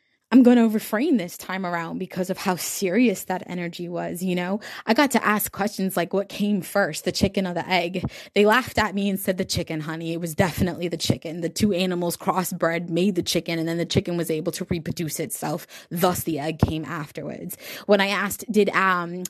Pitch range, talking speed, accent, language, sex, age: 170-200 Hz, 220 wpm, American, English, female, 20-39